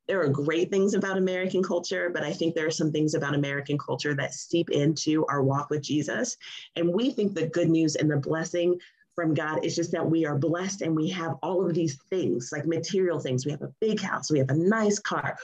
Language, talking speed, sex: English, 235 wpm, female